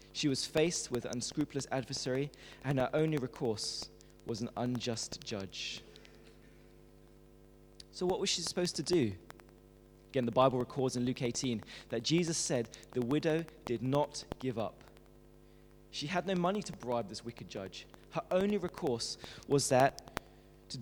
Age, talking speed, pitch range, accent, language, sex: 20-39, 150 wpm, 105-160 Hz, British, English, male